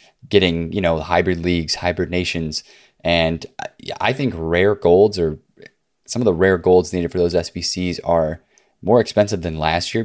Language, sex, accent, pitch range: English, male, American, 85-95 Hz